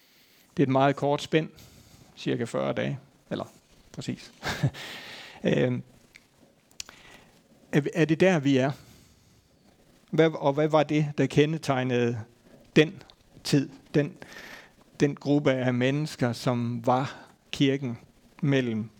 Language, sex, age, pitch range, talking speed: Danish, male, 60-79, 125-150 Hz, 105 wpm